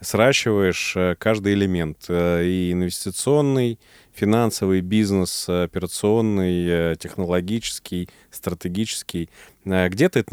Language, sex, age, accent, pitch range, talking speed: Russian, male, 20-39, native, 85-105 Hz, 70 wpm